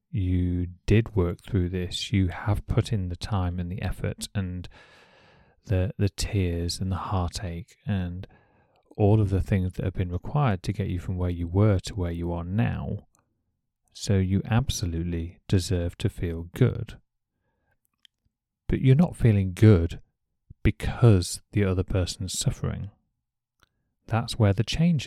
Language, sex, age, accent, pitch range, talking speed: English, male, 30-49, British, 90-110 Hz, 150 wpm